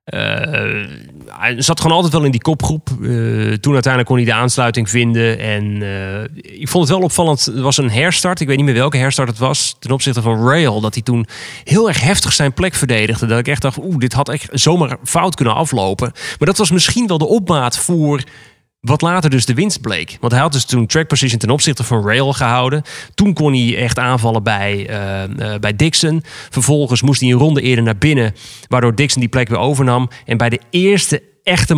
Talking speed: 215 wpm